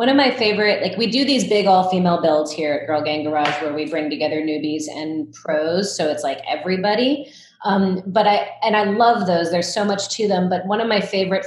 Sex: female